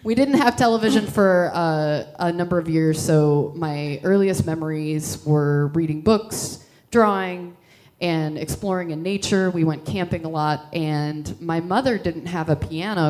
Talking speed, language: 155 wpm, English